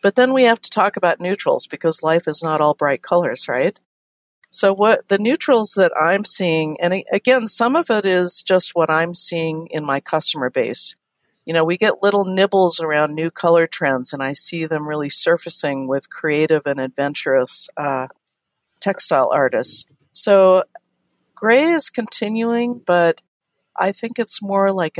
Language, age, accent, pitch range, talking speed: English, 50-69, American, 150-185 Hz, 170 wpm